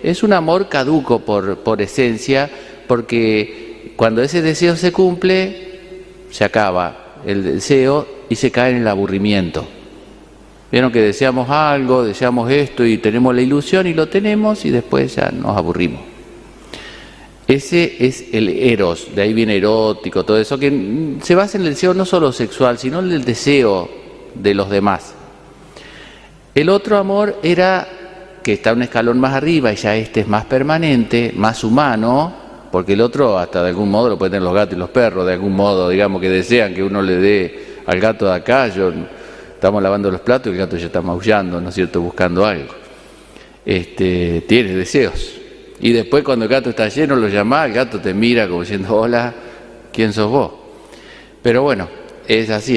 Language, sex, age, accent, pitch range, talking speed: Spanish, male, 50-69, Argentinian, 100-145 Hz, 175 wpm